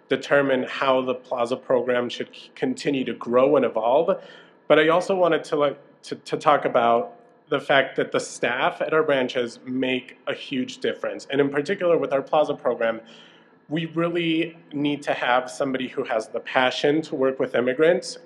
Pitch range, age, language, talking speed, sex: 125-150 Hz, 30-49, English, 180 wpm, male